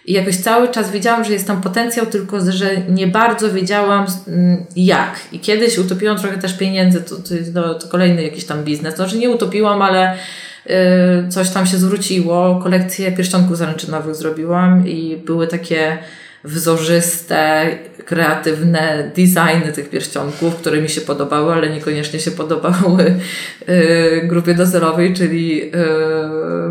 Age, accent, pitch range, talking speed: 20-39, native, 155-195 Hz, 140 wpm